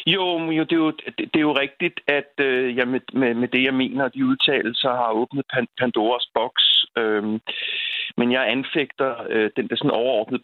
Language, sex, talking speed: Danish, male, 180 wpm